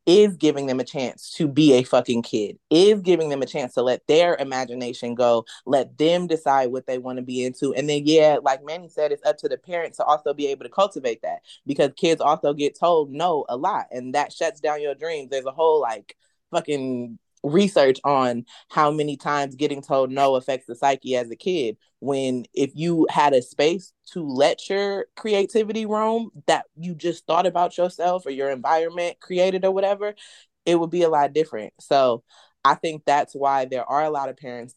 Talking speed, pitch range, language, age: 205 wpm, 130-170 Hz, English, 20-39